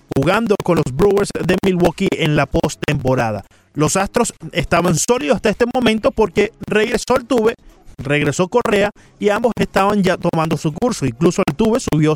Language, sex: Spanish, male